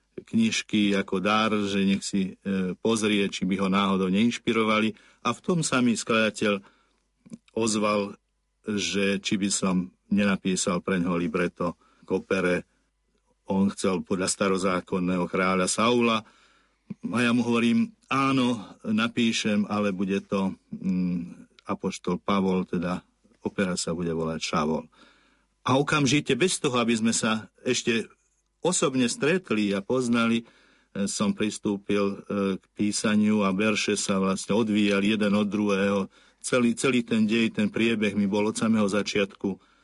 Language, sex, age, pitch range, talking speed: Slovak, male, 50-69, 95-115 Hz, 130 wpm